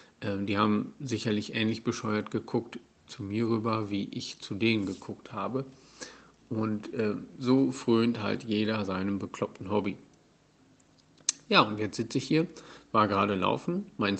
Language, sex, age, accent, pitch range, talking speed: German, male, 50-69, German, 105-125 Hz, 145 wpm